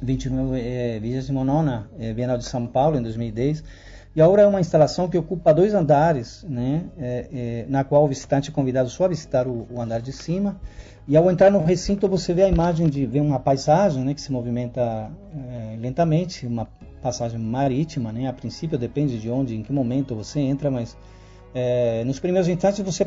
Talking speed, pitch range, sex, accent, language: 190 wpm, 120-160 Hz, male, Brazilian, Portuguese